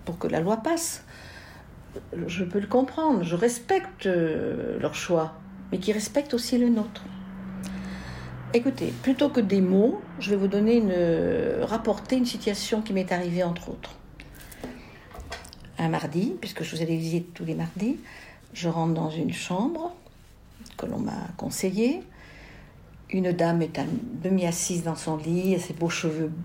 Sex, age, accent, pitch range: female, 60-79, French, 165-235 Hz